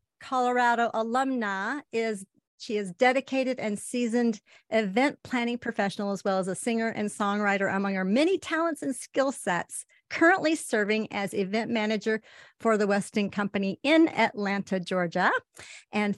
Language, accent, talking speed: English, American, 140 wpm